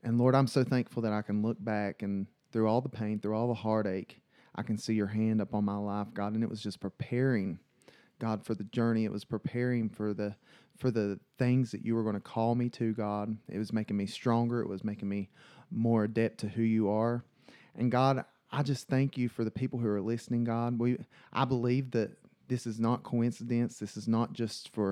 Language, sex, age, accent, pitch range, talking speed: English, male, 30-49, American, 105-120 Hz, 230 wpm